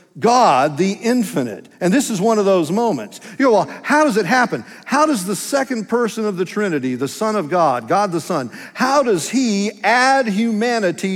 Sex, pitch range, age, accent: male, 150-220 Hz, 50-69, American